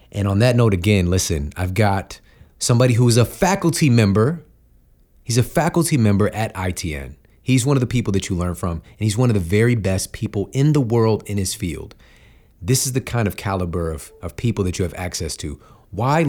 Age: 30-49